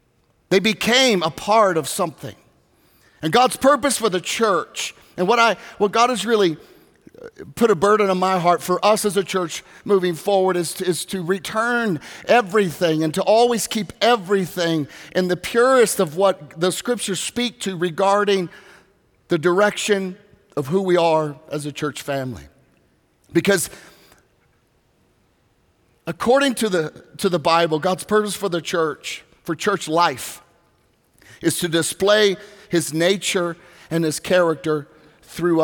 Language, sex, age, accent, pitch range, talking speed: English, male, 50-69, American, 165-210 Hz, 145 wpm